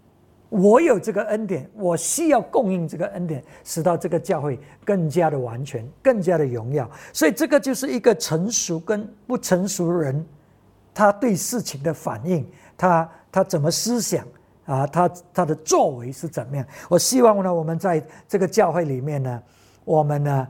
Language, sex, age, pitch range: English, male, 60-79, 130-190 Hz